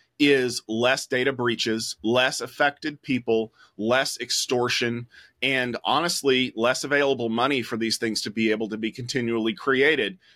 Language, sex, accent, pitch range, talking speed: English, male, American, 115-150 Hz, 140 wpm